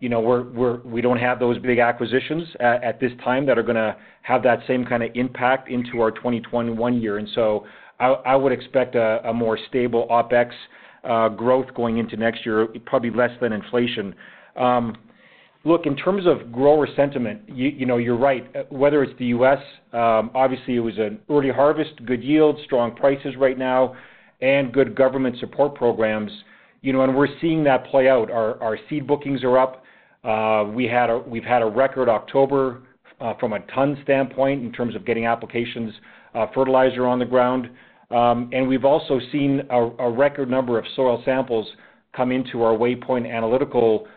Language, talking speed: English, 185 wpm